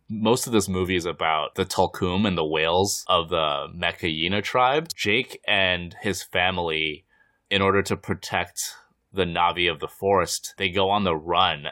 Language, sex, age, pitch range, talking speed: English, male, 20-39, 80-100 Hz, 170 wpm